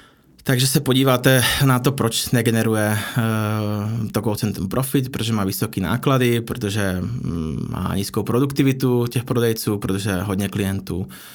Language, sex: Czech, male